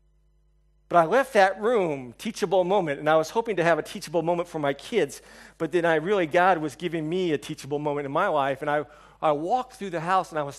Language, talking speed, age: English, 245 wpm, 50-69